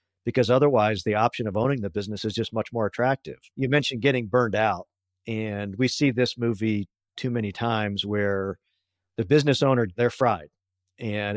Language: English